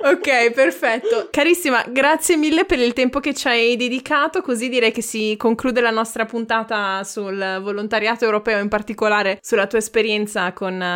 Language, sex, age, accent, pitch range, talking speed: Italian, female, 20-39, native, 210-265 Hz, 160 wpm